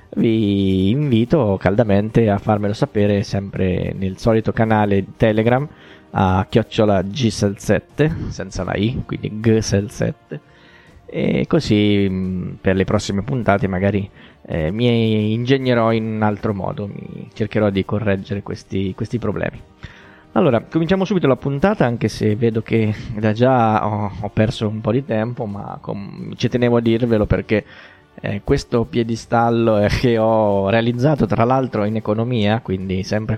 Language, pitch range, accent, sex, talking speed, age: Italian, 100-120 Hz, native, male, 140 wpm, 20-39